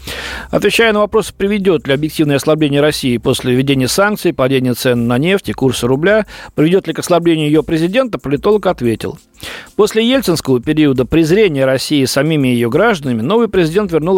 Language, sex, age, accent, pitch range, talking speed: Russian, male, 40-59, native, 135-185 Hz, 155 wpm